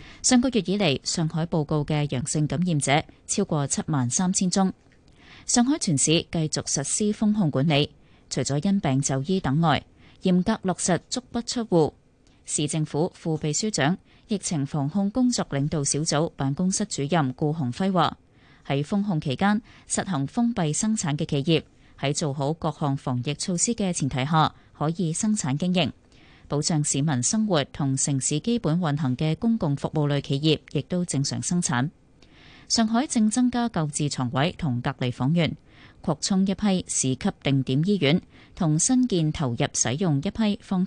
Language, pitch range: Chinese, 140-195 Hz